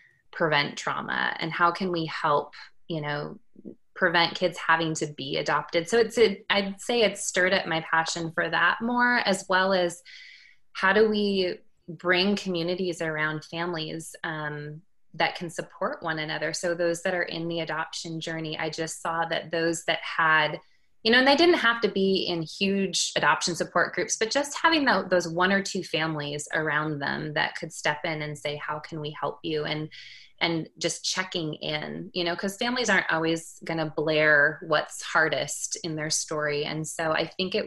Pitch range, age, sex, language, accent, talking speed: 155-185 Hz, 20-39, female, English, American, 185 wpm